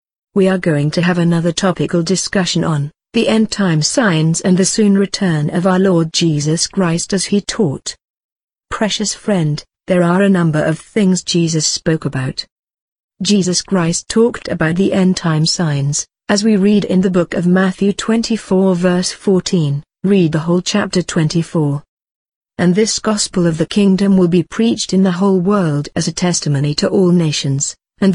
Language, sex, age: English, female, 50-69